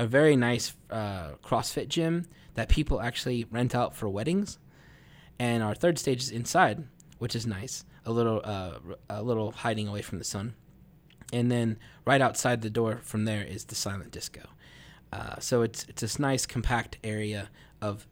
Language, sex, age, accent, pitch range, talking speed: English, male, 20-39, American, 110-150 Hz, 175 wpm